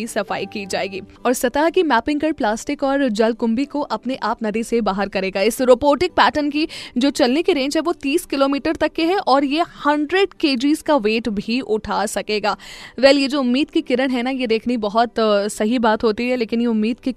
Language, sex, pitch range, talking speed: Hindi, female, 215-275 Hz, 110 wpm